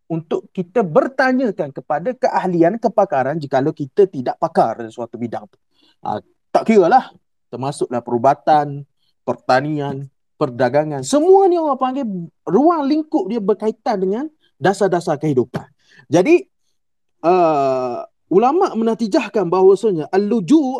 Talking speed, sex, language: 115 wpm, male, Malay